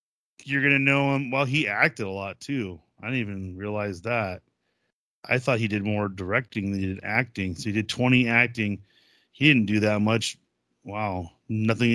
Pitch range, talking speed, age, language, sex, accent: 100-125 Hz, 190 wpm, 30-49, English, male, American